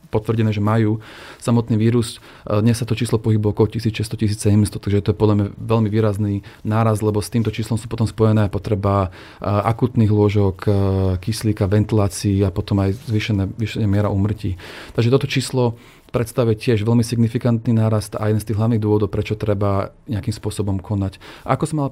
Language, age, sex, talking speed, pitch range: Slovak, 30-49, male, 165 wpm, 105-115 Hz